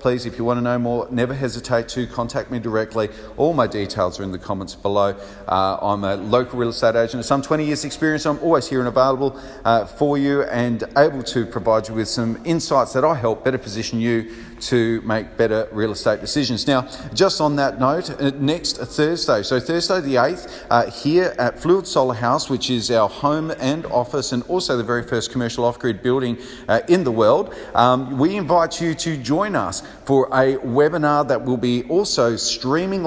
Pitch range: 120-150 Hz